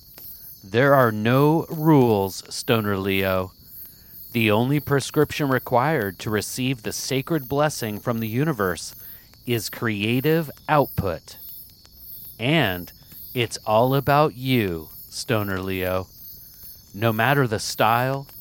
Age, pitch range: 40-59, 105-145 Hz